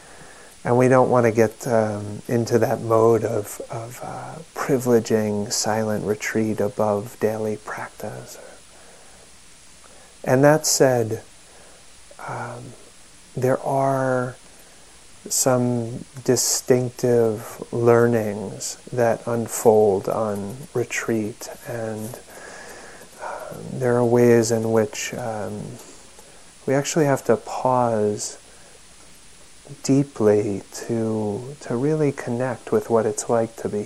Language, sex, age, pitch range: English, male, 30-49, 110-130 Hz